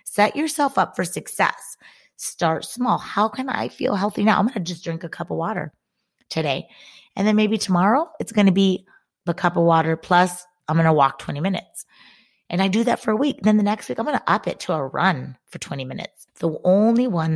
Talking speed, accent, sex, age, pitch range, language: 230 wpm, American, female, 30-49, 165-210 Hz, English